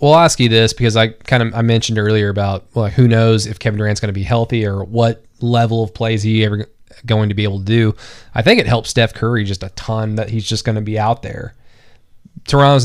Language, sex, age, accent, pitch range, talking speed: English, male, 20-39, American, 110-125 Hz, 245 wpm